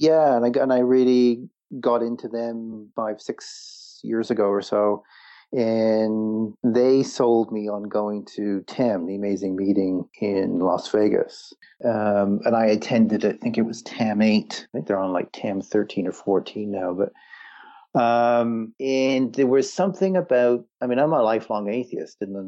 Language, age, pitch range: English, 40-59, 100-115 Hz